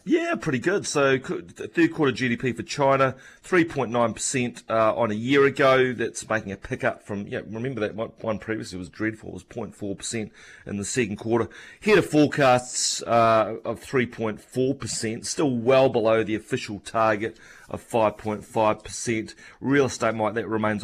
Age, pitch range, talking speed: 30-49, 105-125 Hz, 160 wpm